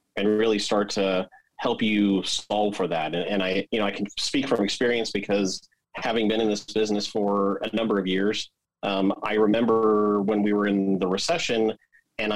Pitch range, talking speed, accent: 95-110 Hz, 195 wpm, American